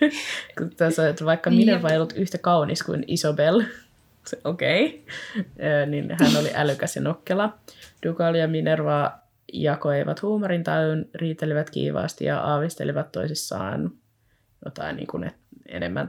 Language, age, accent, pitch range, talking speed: Finnish, 20-39, native, 150-170 Hz, 110 wpm